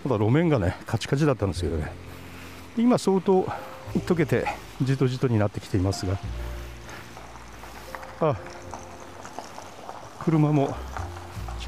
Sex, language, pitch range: male, Japanese, 90-125 Hz